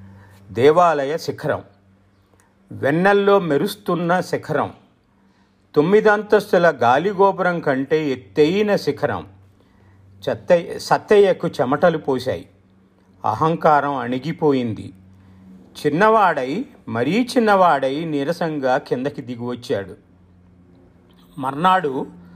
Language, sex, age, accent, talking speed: Telugu, male, 50-69, native, 60 wpm